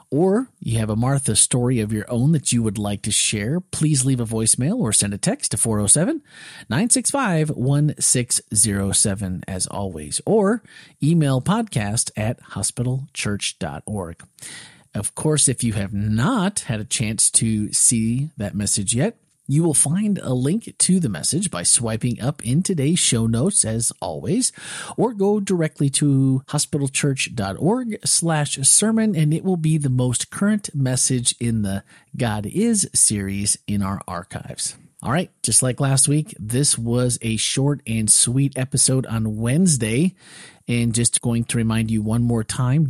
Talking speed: 155 wpm